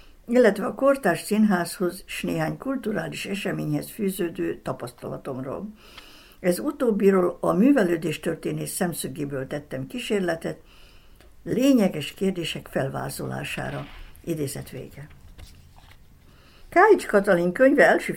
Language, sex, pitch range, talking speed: Hungarian, female, 150-210 Hz, 90 wpm